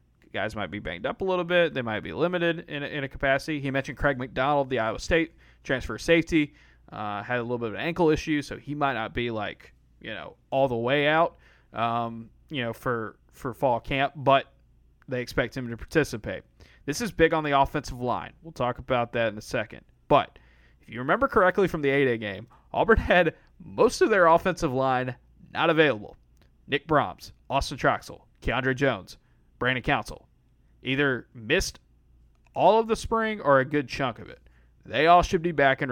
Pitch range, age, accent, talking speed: 110-150 Hz, 30-49, American, 195 wpm